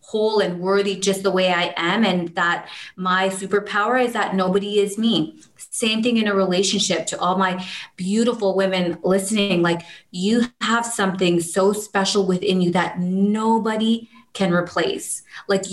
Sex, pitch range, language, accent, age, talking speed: female, 175-200 Hz, English, American, 30-49, 155 wpm